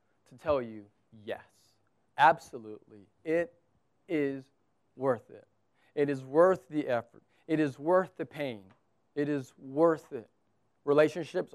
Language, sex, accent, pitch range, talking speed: English, male, American, 120-150 Hz, 125 wpm